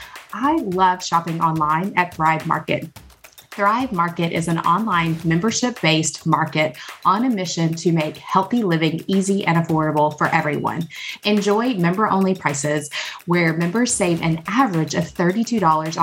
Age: 30-49